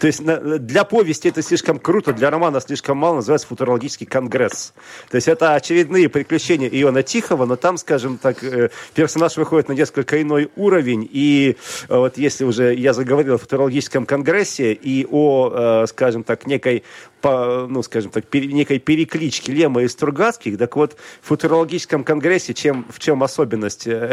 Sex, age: male, 40-59